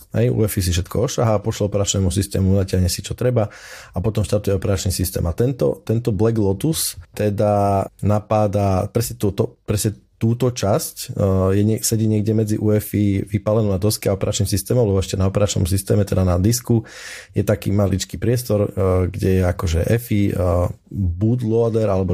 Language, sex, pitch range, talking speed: Slovak, male, 95-115 Hz, 175 wpm